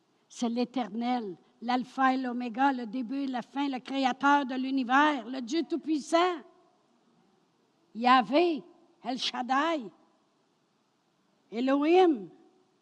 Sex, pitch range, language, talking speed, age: female, 190-255 Hz, French, 100 wpm, 60-79